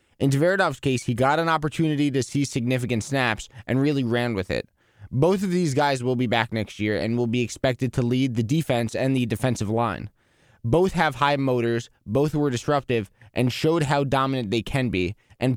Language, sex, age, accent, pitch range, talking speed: English, male, 20-39, American, 115-145 Hz, 200 wpm